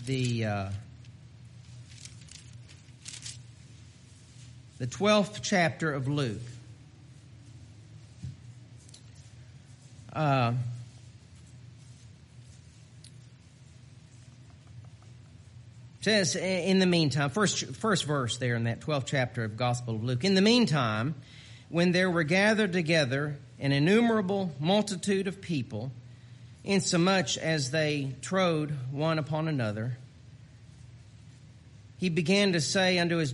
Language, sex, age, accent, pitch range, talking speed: English, male, 40-59, American, 120-160 Hz, 95 wpm